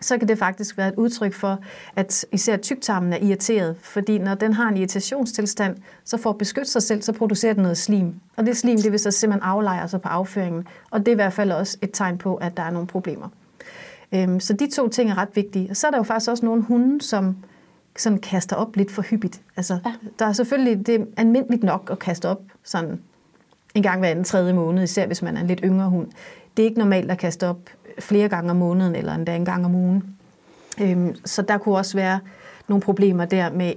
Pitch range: 185-220 Hz